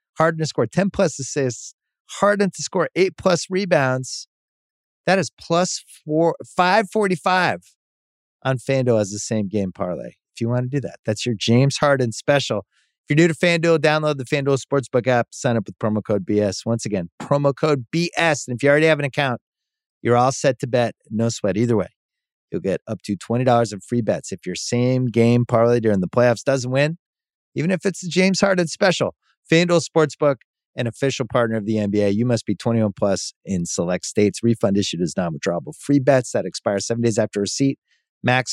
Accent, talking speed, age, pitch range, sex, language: American, 200 wpm, 30-49, 115-155 Hz, male, English